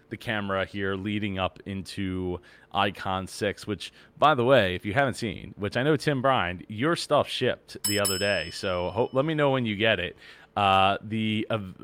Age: 30-49